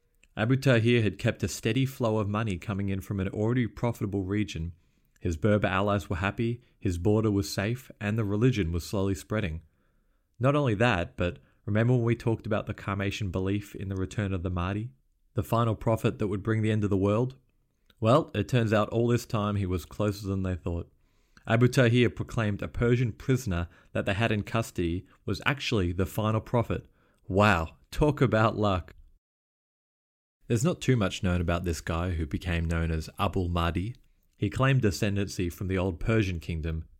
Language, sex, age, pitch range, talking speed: English, male, 30-49, 85-110 Hz, 185 wpm